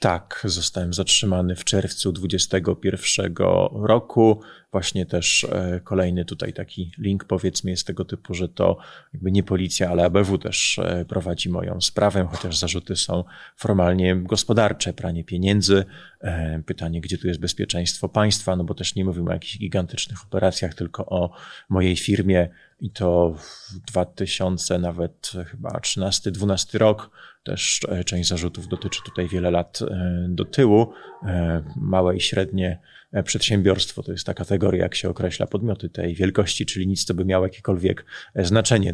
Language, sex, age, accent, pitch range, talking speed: Polish, male, 30-49, native, 90-100 Hz, 145 wpm